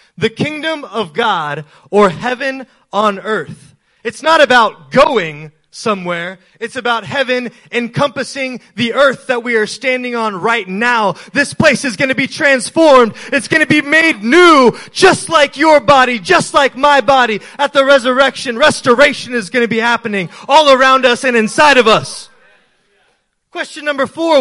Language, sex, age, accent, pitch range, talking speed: English, male, 20-39, American, 180-265 Hz, 160 wpm